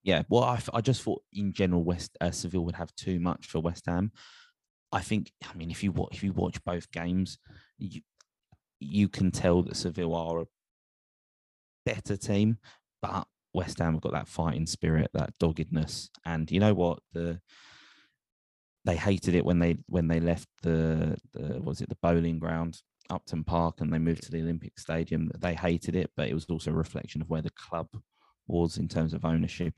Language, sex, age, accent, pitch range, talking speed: English, male, 20-39, British, 80-90 Hz, 200 wpm